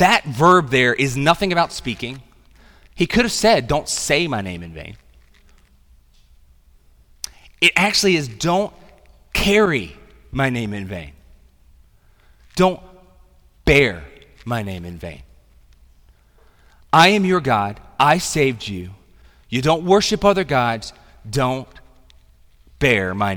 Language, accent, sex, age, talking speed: English, American, male, 30-49, 120 wpm